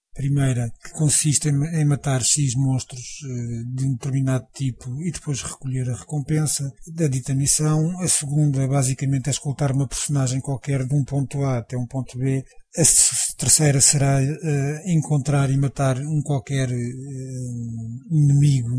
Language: English